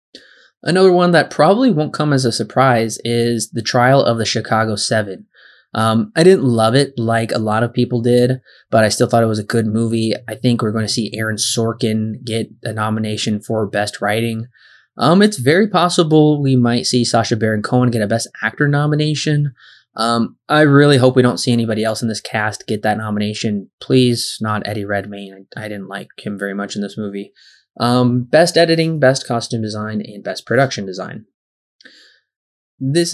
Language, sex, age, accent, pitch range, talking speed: English, male, 20-39, American, 110-130 Hz, 190 wpm